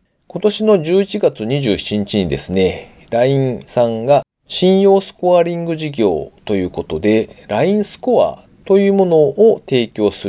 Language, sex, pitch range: Japanese, male, 110-175 Hz